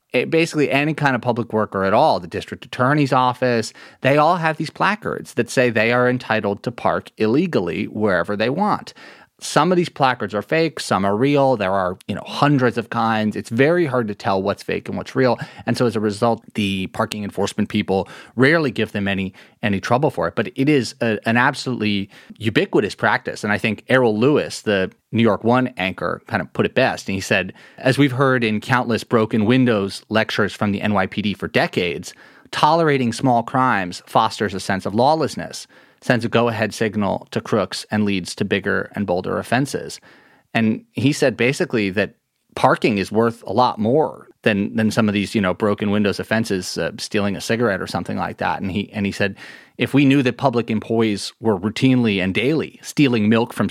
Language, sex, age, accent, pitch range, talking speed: English, male, 30-49, American, 100-130 Hz, 200 wpm